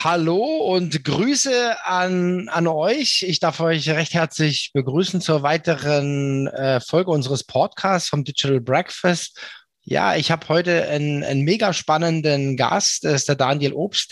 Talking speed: 145 wpm